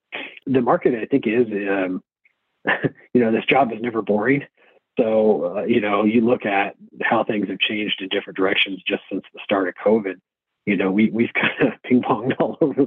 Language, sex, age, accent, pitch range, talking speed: English, male, 40-59, American, 100-115 Hz, 200 wpm